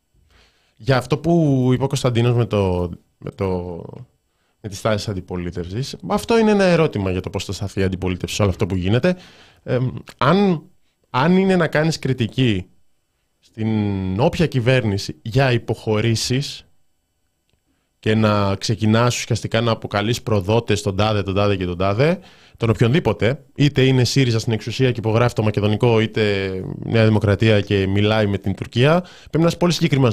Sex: male